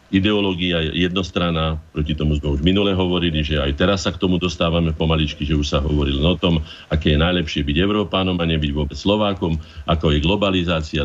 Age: 50-69